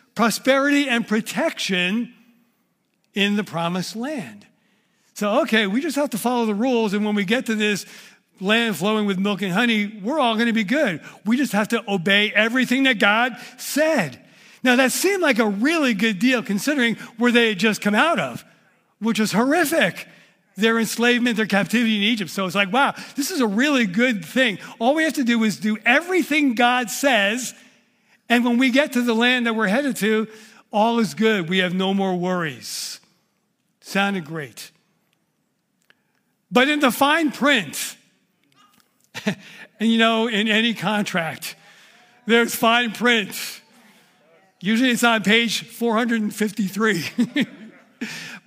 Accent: American